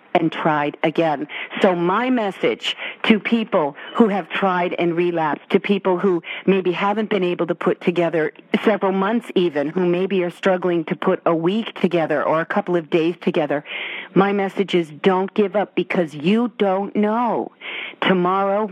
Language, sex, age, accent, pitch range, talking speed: English, female, 50-69, American, 165-195 Hz, 165 wpm